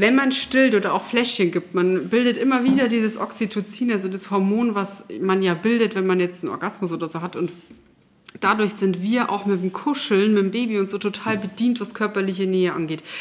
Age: 30-49